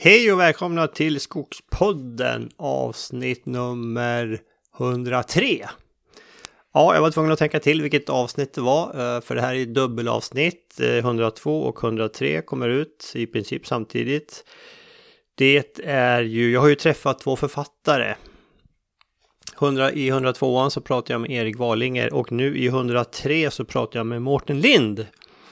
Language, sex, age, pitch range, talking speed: Swedish, male, 30-49, 115-145 Hz, 140 wpm